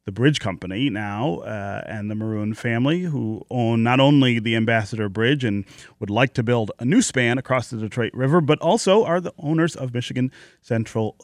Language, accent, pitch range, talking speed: English, American, 105-145 Hz, 190 wpm